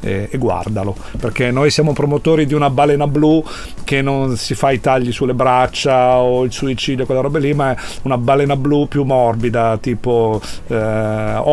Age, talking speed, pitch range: 40-59, 170 wpm, 125-160 Hz